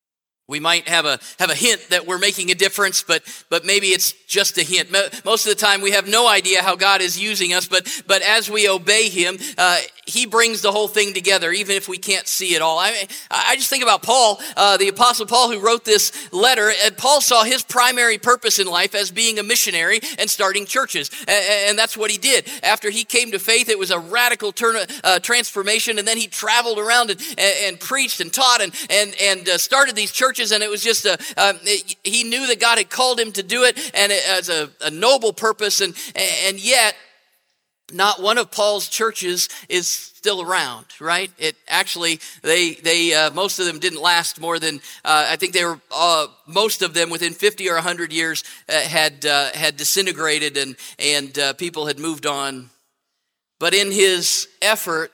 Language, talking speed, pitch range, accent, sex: English, 210 wpm, 170-220 Hz, American, male